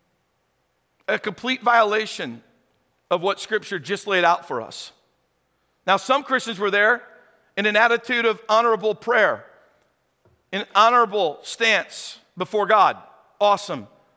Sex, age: male, 50-69